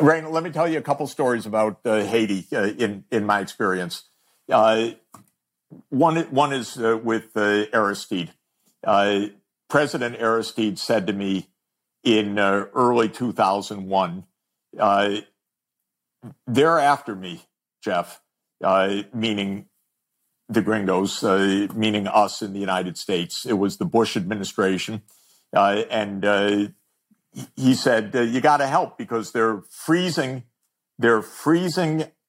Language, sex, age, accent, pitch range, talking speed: English, male, 50-69, American, 105-150 Hz, 130 wpm